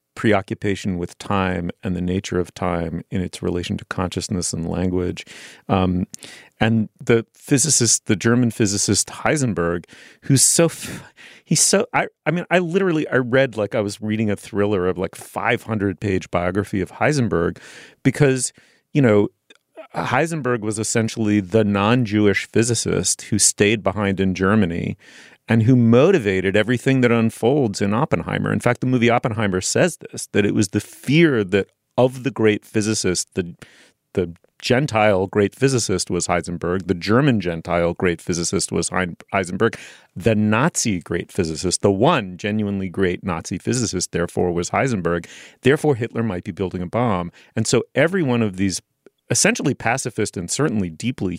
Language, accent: English, American